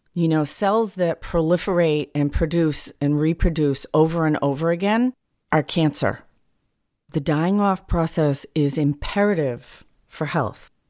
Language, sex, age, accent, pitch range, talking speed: English, female, 40-59, American, 150-180 Hz, 125 wpm